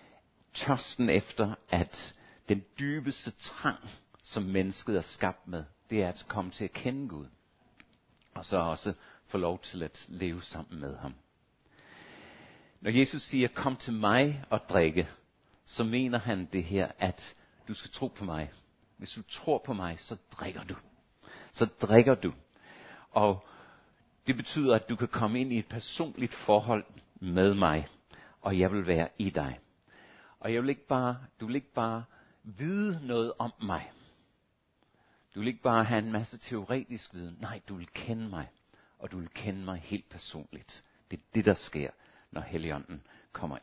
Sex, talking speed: male, 170 wpm